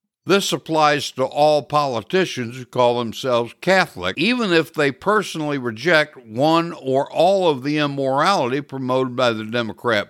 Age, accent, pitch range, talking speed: 60-79, American, 130-185 Hz, 145 wpm